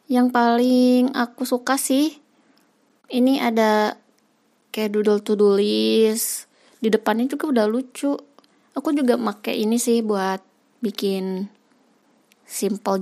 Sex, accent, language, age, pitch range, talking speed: female, native, Indonesian, 20-39, 215-260 Hz, 110 wpm